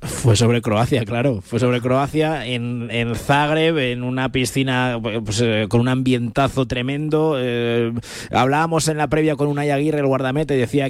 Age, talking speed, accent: 20-39, 165 wpm, Spanish